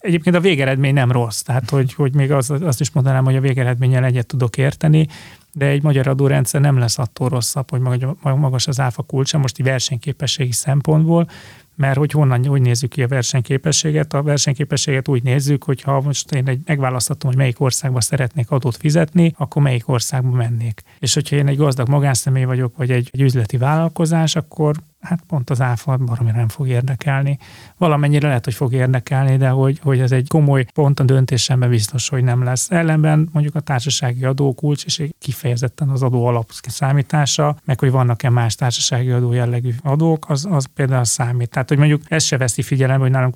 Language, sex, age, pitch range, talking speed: Hungarian, male, 30-49, 125-145 Hz, 185 wpm